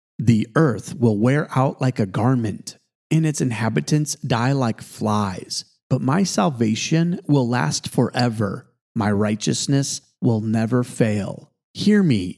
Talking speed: 130 wpm